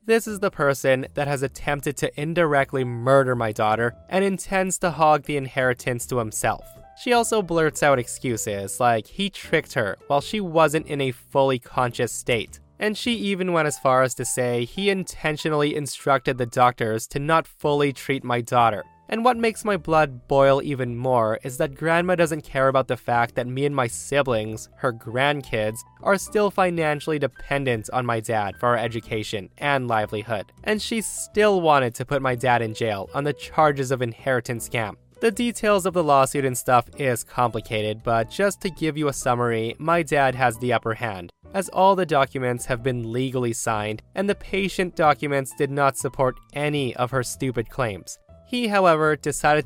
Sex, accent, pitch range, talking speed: male, American, 120-155 Hz, 185 wpm